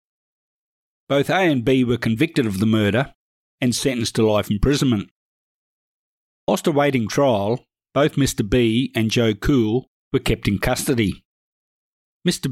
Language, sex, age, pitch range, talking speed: English, male, 50-69, 110-135 Hz, 135 wpm